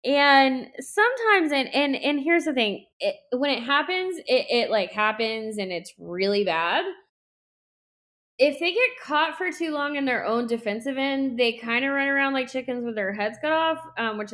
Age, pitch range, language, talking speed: 10-29, 200-270 Hz, English, 195 wpm